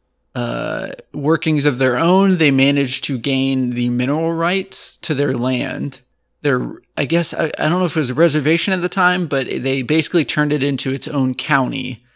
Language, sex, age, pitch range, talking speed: English, male, 20-39, 125-150 Hz, 190 wpm